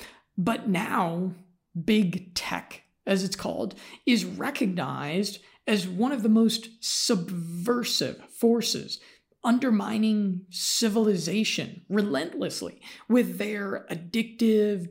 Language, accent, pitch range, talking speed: English, American, 185-230 Hz, 90 wpm